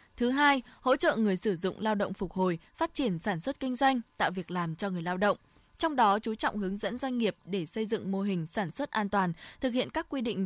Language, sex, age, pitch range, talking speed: Vietnamese, female, 20-39, 190-255 Hz, 265 wpm